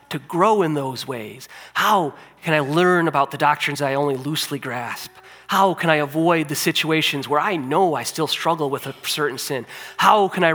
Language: English